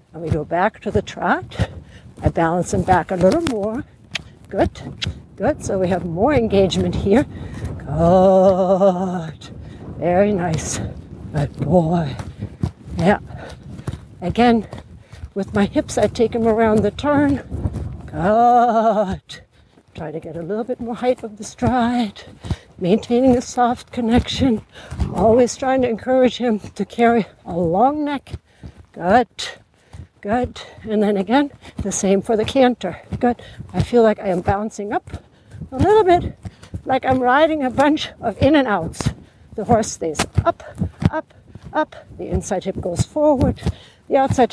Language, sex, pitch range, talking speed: English, female, 175-245 Hz, 145 wpm